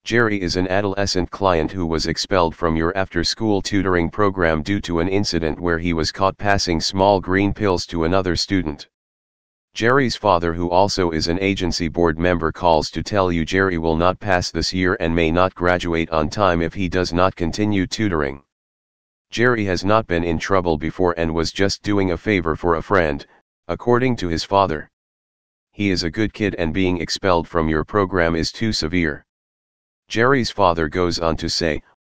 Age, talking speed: 40-59, 185 wpm